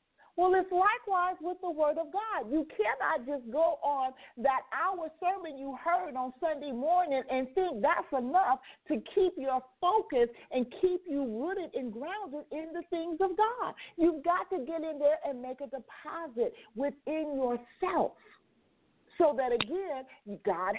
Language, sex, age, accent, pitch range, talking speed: English, female, 40-59, American, 245-330 Hz, 160 wpm